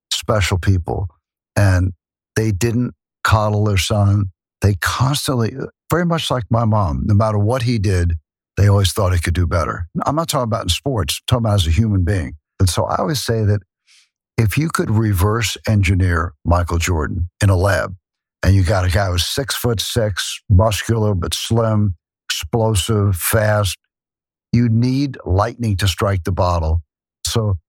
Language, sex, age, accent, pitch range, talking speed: English, male, 60-79, American, 90-110 Hz, 165 wpm